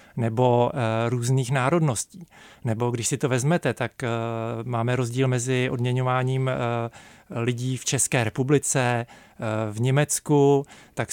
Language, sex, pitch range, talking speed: Czech, male, 115-140 Hz, 110 wpm